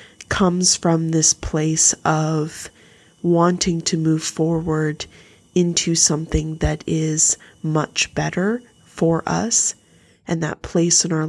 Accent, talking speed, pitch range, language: American, 115 wpm, 160-180 Hz, English